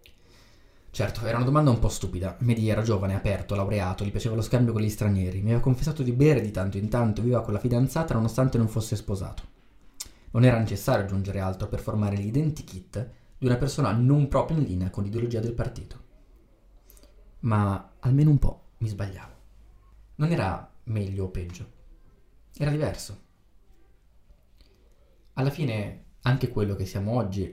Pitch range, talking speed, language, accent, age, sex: 95-125 Hz, 165 wpm, Italian, native, 20-39, male